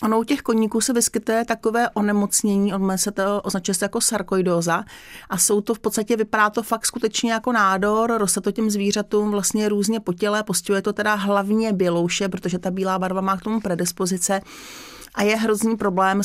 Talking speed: 190 wpm